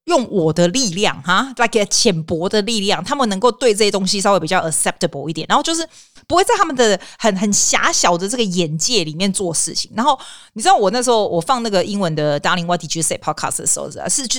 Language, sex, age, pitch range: Chinese, female, 30-49, 165-220 Hz